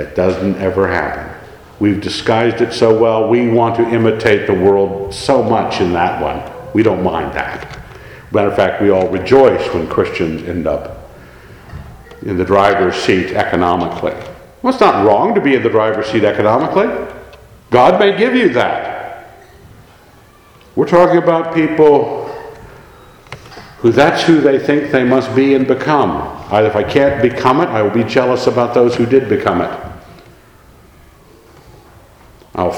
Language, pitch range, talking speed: English, 105-160 Hz, 155 wpm